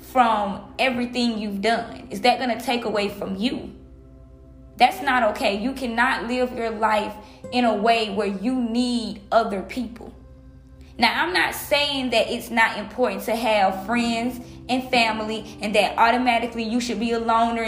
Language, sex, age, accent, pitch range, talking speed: English, female, 20-39, American, 215-245 Hz, 165 wpm